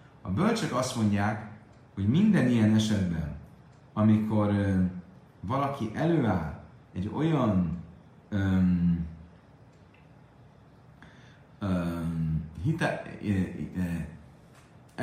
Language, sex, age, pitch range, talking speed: Hungarian, male, 30-49, 100-130 Hz, 80 wpm